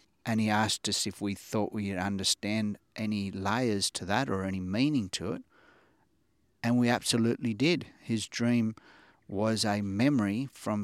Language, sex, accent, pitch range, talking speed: English, male, Australian, 95-110 Hz, 155 wpm